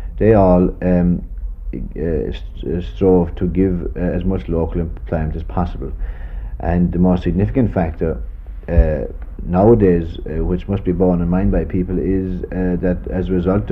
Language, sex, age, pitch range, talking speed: English, male, 50-69, 80-95 Hz, 160 wpm